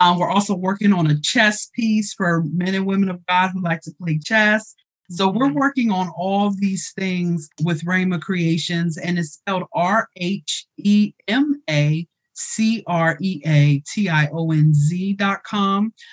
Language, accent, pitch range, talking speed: English, American, 170-195 Hz, 125 wpm